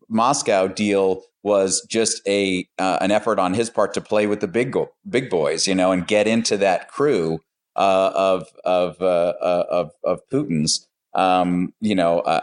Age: 30-49